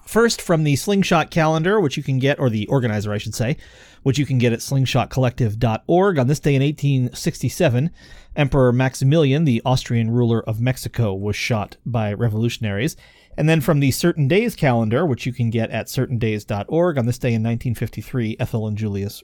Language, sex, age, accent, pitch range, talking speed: English, male, 30-49, American, 110-145 Hz, 180 wpm